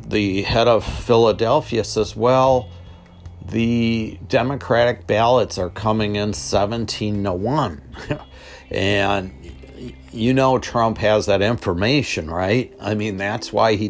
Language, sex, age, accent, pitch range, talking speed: English, male, 50-69, American, 95-120 Hz, 120 wpm